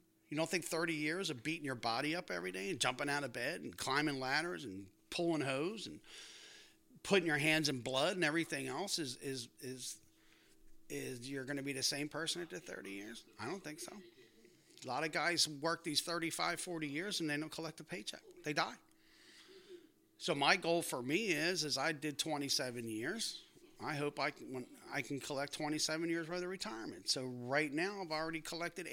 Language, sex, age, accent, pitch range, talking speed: English, male, 40-59, American, 130-175 Hz, 200 wpm